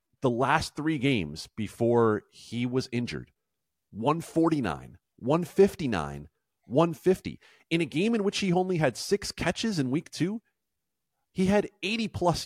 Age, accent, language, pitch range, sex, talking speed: 40-59, American, English, 115-175 Hz, male, 130 wpm